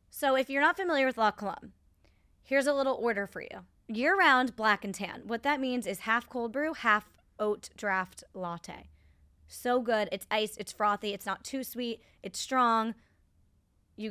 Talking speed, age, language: 180 wpm, 20-39, English